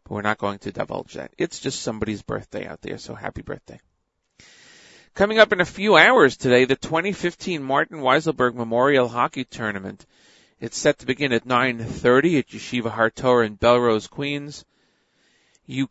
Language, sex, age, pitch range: English, male, 40-59, 115-140 Hz